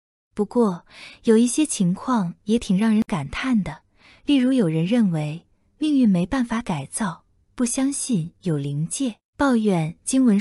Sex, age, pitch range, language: female, 20-39, 175-245 Hz, Chinese